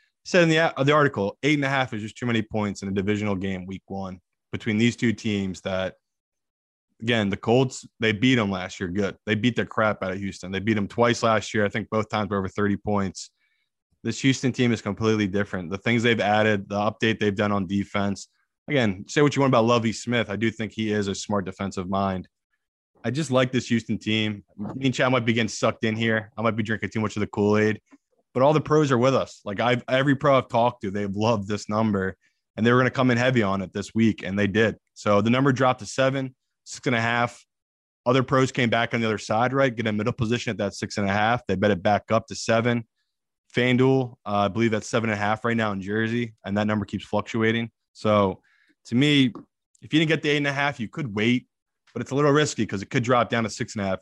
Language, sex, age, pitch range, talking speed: English, male, 20-39, 100-120 Hz, 255 wpm